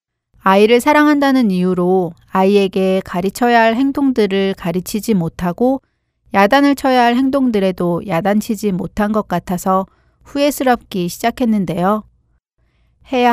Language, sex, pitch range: Korean, female, 185-230 Hz